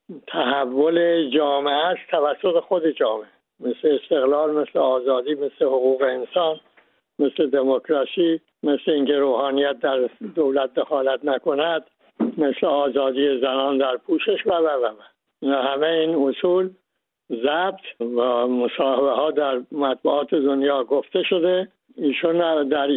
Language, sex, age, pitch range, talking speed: English, male, 60-79, 140-170 Hz, 115 wpm